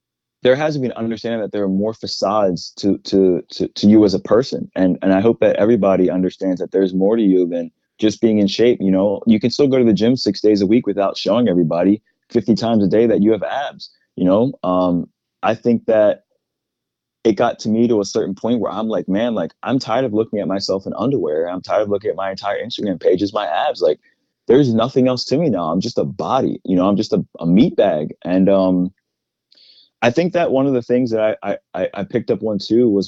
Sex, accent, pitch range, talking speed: male, American, 95-120 Hz, 240 wpm